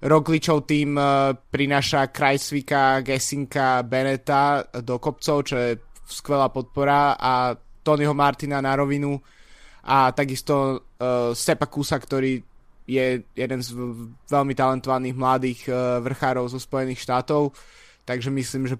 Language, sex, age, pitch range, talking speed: Slovak, male, 20-39, 130-145 Hz, 120 wpm